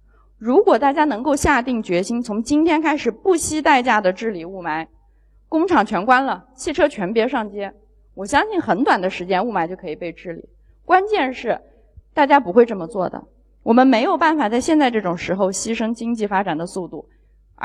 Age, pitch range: 20-39, 185-280 Hz